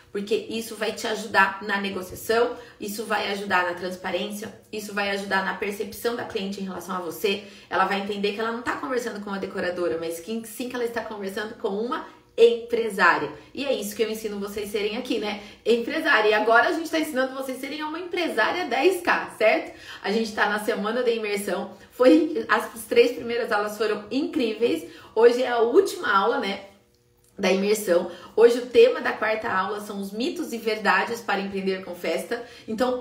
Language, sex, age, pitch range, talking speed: Portuguese, female, 30-49, 200-240 Hz, 195 wpm